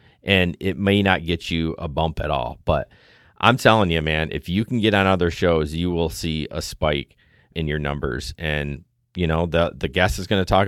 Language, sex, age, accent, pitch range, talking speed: English, male, 30-49, American, 85-110 Hz, 225 wpm